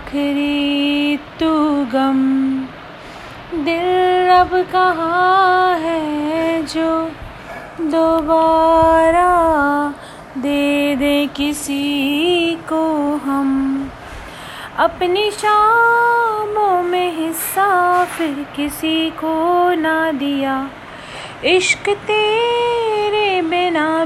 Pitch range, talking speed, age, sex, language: 270-330 Hz, 60 wpm, 30-49, female, Hindi